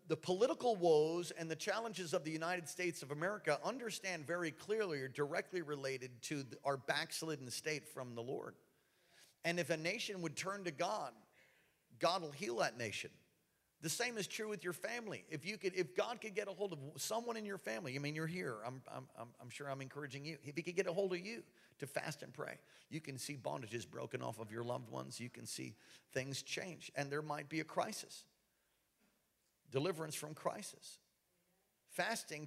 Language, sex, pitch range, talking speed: English, male, 135-180 Hz, 200 wpm